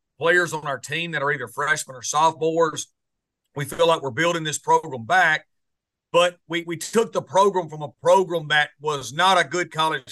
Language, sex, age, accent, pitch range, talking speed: English, male, 40-59, American, 150-180 Hz, 195 wpm